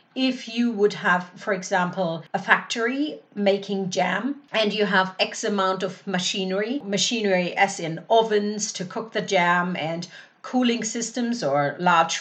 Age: 40-59